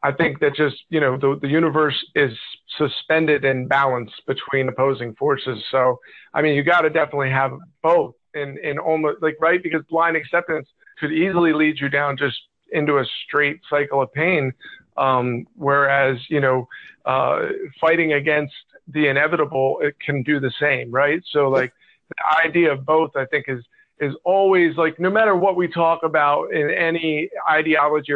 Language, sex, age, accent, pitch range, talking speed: English, male, 40-59, American, 140-170 Hz, 170 wpm